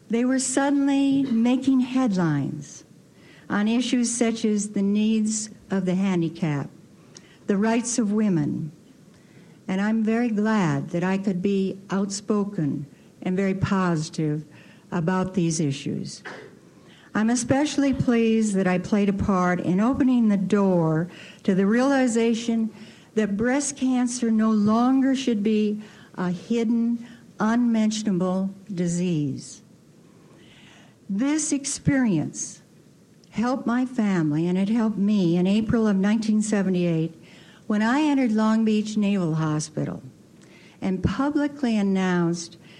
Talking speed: 115 wpm